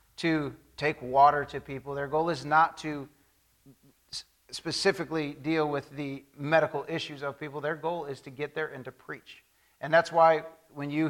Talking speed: 175 wpm